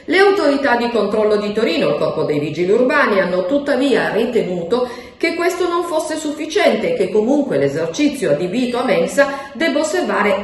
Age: 40-59